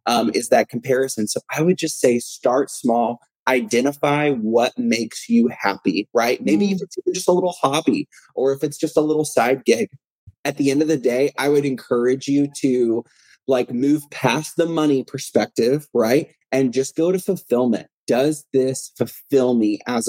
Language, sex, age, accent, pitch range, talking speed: English, male, 20-39, American, 125-155 Hz, 180 wpm